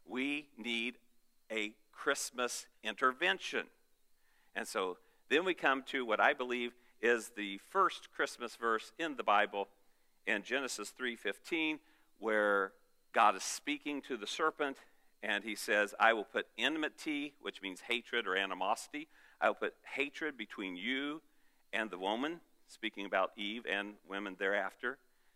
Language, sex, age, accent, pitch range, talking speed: English, male, 50-69, American, 110-155 Hz, 140 wpm